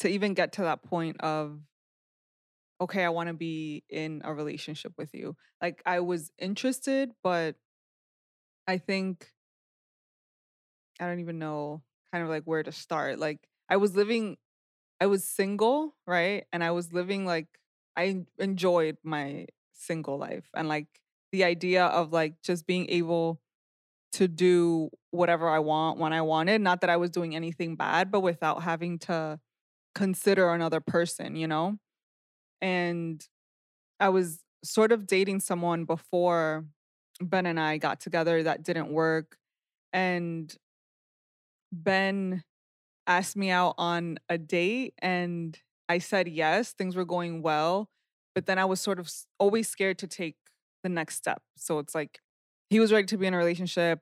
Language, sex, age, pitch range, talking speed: English, female, 20-39, 160-185 Hz, 155 wpm